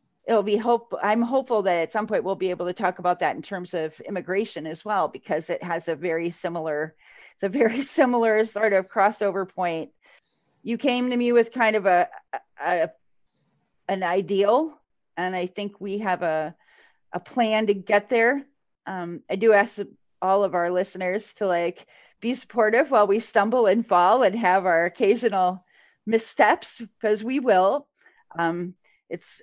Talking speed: 175 wpm